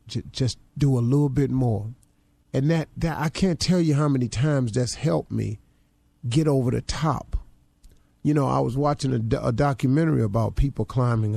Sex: male